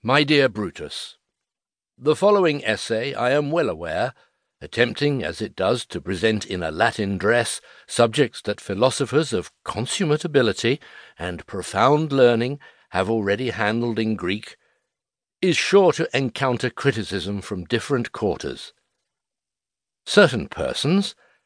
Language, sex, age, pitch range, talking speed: English, male, 60-79, 110-150 Hz, 125 wpm